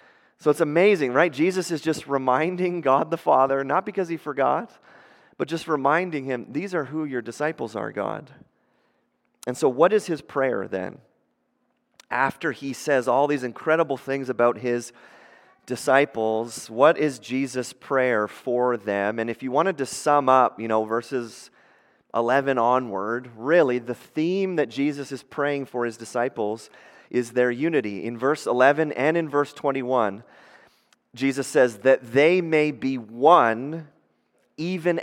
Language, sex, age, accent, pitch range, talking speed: English, male, 30-49, American, 120-155 Hz, 150 wpm